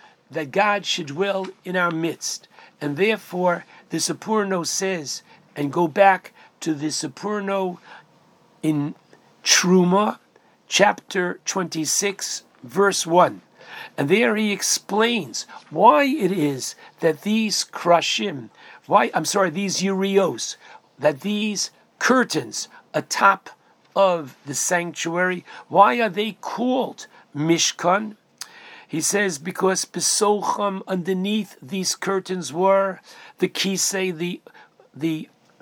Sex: male